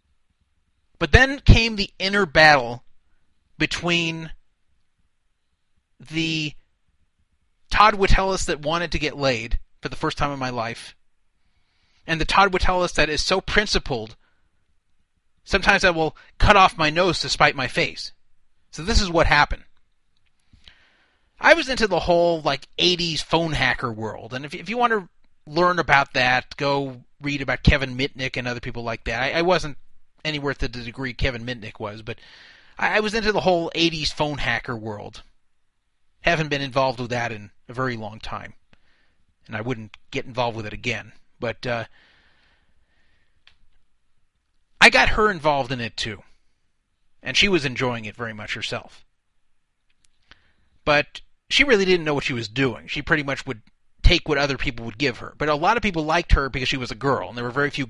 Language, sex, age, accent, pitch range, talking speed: English, male, 30-49, American, 110-160 Hz, 175 wpm